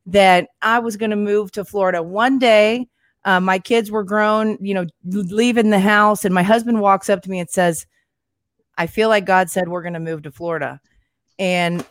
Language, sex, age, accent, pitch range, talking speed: English, female, 30-49, American, 180-215 Hz, 205 wpm